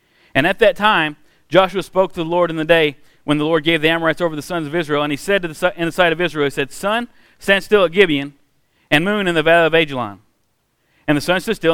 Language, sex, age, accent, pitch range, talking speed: English, male, 40-59, American, 145-180 Hz, 255 wpm